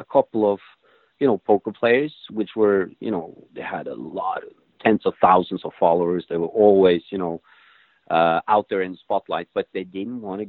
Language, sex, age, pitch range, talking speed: English, male, 40-59, 90-110 Hz, 210 wpm